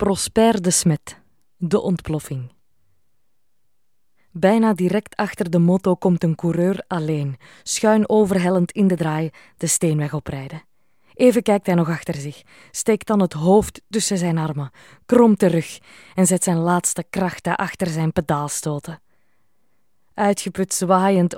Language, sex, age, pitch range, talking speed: Dutch, female, 20-39, 160-195 Hz, 130 wpm